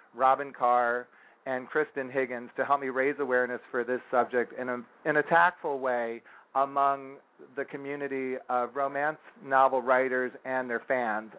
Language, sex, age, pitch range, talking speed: English, male, 40-59, 120-140 Hz, 155 wpm